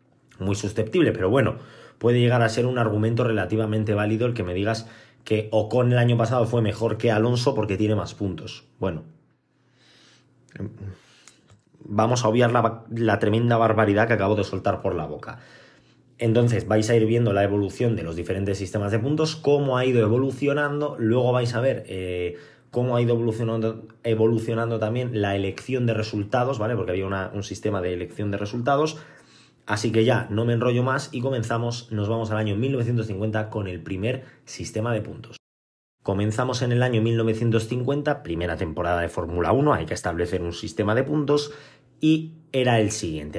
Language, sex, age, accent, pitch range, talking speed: Spanish, male, 20-39, Spanish, 105-125 Hz, 175 wpm